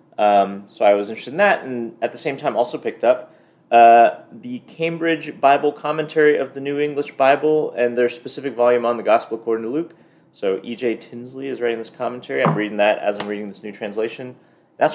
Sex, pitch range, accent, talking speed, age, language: male, 95-125 Hz, American, 210 wpm, 30-49, English